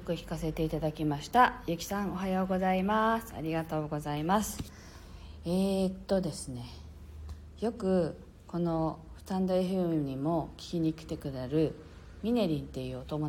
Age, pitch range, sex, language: 40-59, 140-200 Hz, female, Japanese